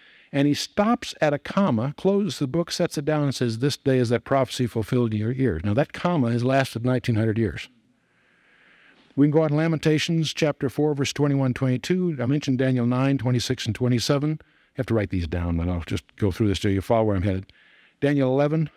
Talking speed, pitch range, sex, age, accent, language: 215 wpm, 115-145 Hz, male, 60-79, American, English